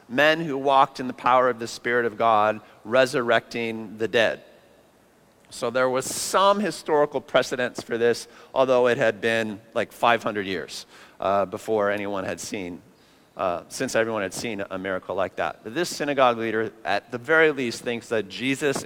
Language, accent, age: English, American, 40-59